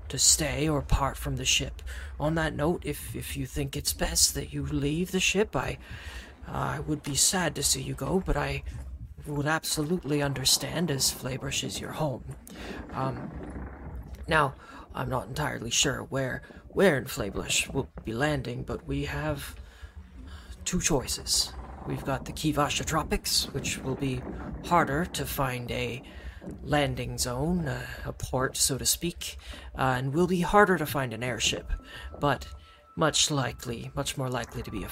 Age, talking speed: 30-49, 165 wpm